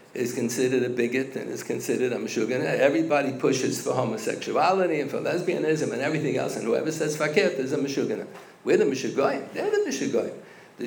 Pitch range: 130-175 Hz